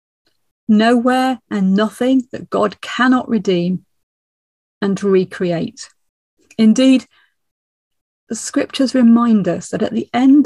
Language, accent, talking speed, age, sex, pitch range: English, British, 105 wpm, 40-59, female, 185-235 Hz